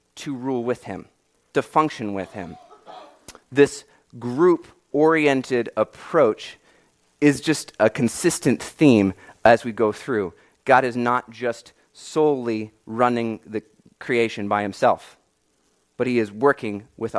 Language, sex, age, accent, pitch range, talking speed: English, male, 30-49, American, 110-145 Hz, 120 wpm